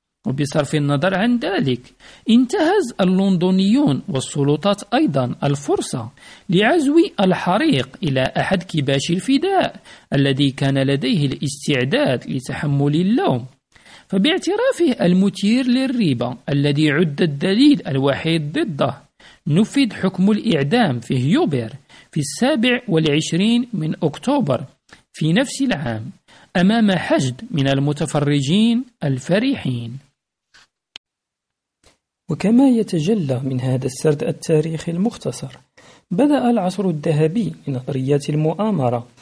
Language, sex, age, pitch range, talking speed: Arabic, male, 50-69, 140-210 Hz, 90 wpm